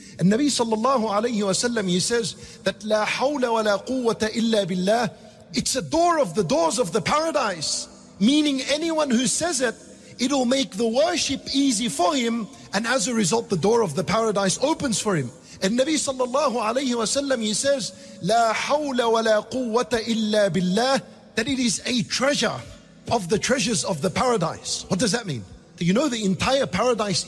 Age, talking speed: 50-69, 170 wpm